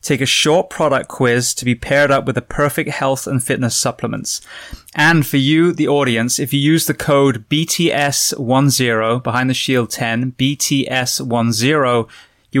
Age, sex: 20-39, male